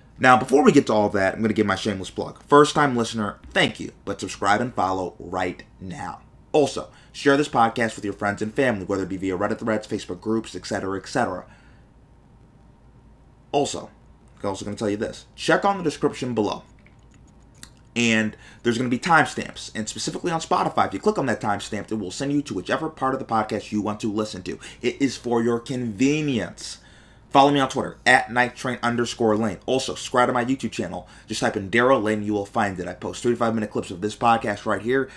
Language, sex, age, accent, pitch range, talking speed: English, male, 30-49, American, 105-135 Hz, 215 wpm